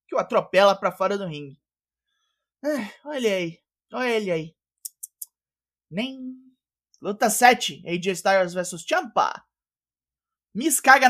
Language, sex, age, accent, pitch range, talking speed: Portuguese, male, 20-39, Brazilian, 180-235 Hz, 120 wpm